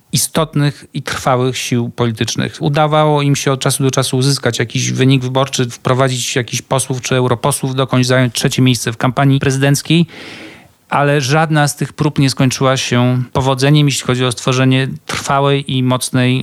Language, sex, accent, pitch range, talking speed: Polish, male, native, 130-150 Hz, 160 wpm